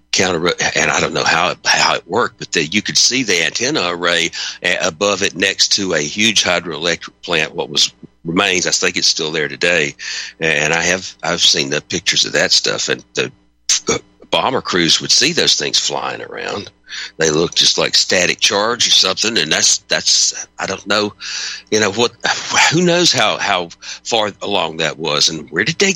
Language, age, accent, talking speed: English, 60-79, American, 195 wpm